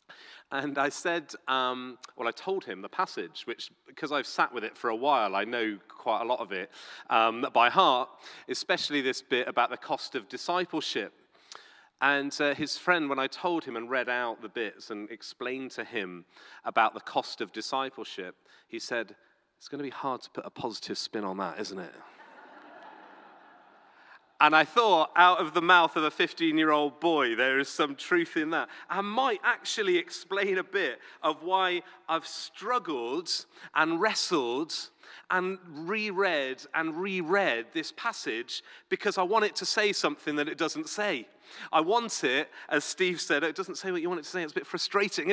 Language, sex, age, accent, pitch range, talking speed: English, male, 40-59, British, 145-200 Hz, 185 wpm